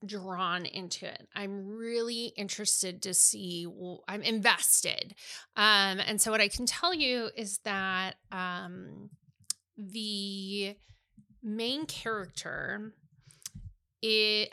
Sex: female